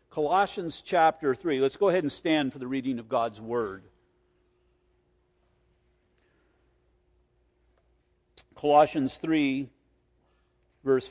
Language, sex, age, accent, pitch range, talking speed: English, male, 50-69, American, 150-195 Hz, 90 wpm